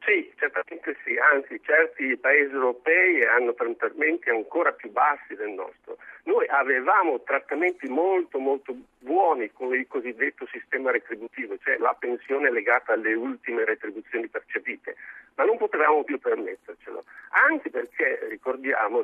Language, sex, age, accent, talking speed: Italian, male, 50-69, native, 130 wpm